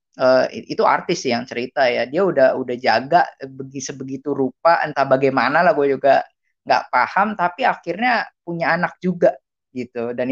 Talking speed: 150 wpm